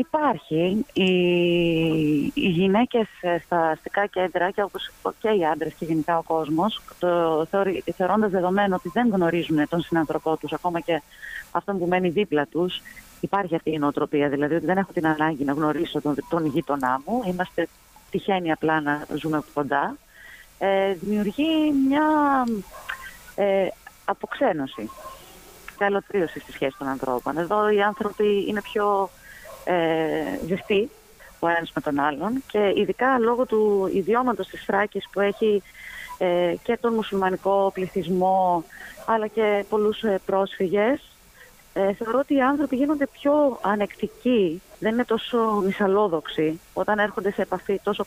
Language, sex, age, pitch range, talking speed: Greek, female, 30-49, 170-210 Hz, 135 wpm